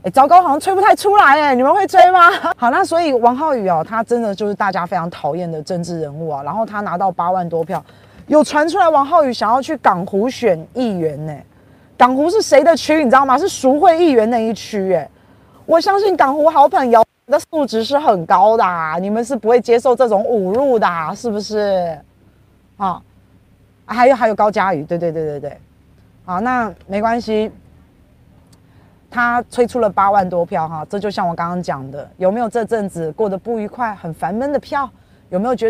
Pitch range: 190-275 Hz